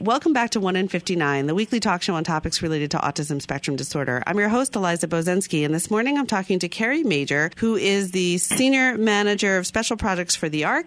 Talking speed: 225 wpm